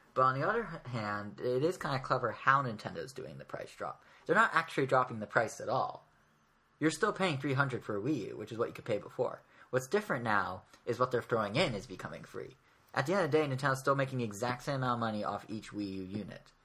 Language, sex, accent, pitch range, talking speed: English, male, American, 105-135 Hz, 250 wpm